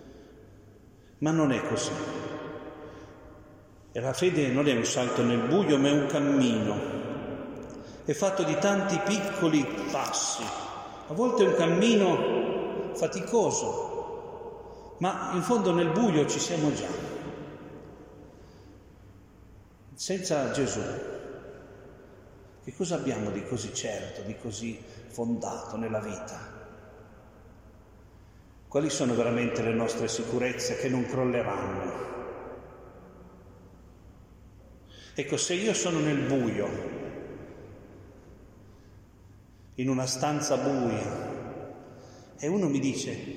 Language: Italian